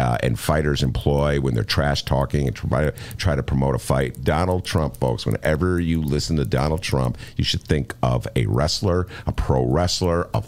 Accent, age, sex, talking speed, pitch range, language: American, 50-69, male, 190 wpm, 85-125 Hz, English